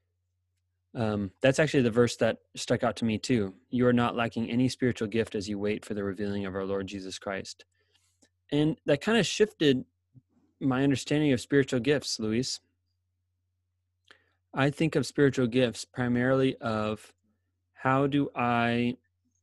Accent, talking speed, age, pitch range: American, 155 wpm, 20-39, 90-120 Hz